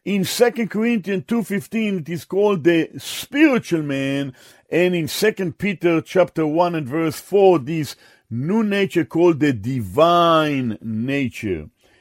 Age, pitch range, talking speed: 50-69, 150-210 Hz, 130 wpm